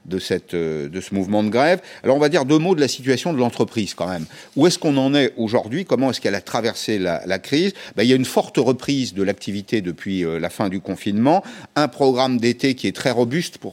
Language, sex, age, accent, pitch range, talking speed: French, male, 50-69, French, 100-130 Hz, 245 wpm